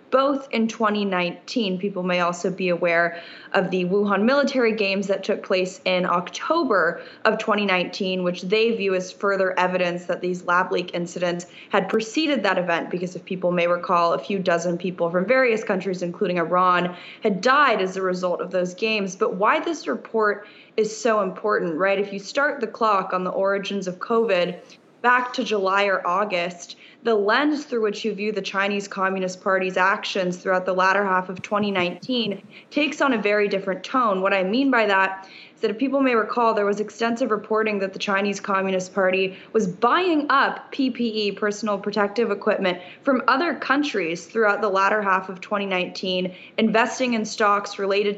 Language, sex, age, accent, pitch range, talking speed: English, female, 10-29, American, 185-220 Hz, 175 wpm